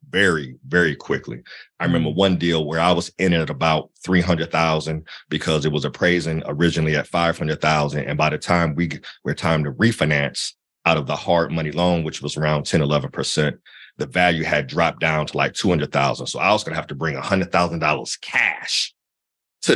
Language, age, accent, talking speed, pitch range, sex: English, 40-59, American, 195 wpm, 75-90 Hz, male